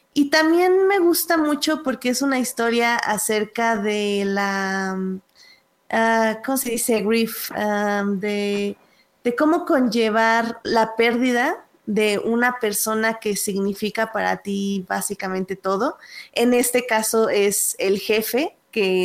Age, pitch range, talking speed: 20-39, 200-250 Hz, 125 wpm